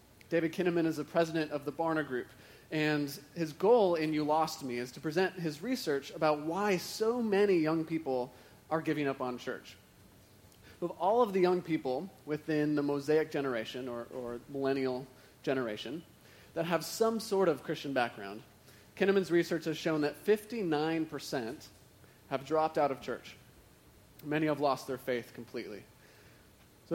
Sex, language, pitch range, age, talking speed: male, English, 125-170 Hz, 30-49, 160 wpm